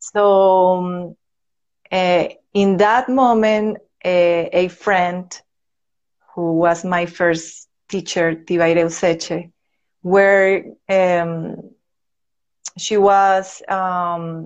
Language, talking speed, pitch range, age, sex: English, 80 wpm, 175-200 Hz, 30-49, female